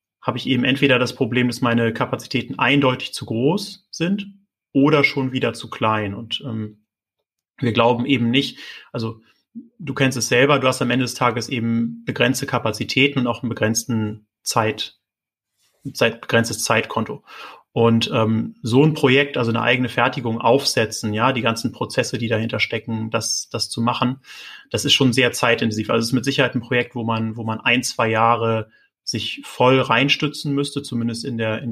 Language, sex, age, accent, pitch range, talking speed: German, male, 30-49, German, 115-135 Hz, 180 wpm